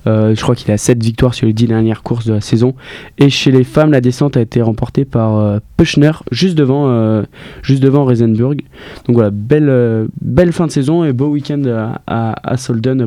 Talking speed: 215 wpm